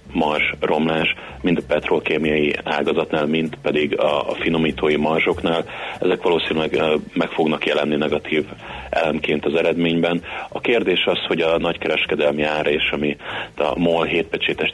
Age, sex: 30-49, male